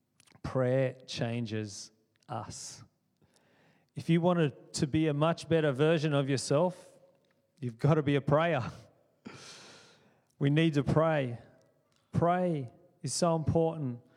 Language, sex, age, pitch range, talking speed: English, male, 30-49, 130-150 Hz, 120 wpm